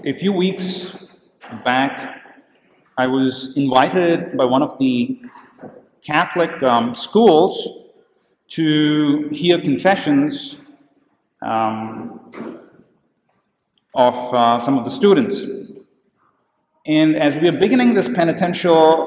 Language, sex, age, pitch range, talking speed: English, male, 40-59, 130-175 Hz, 100 wpm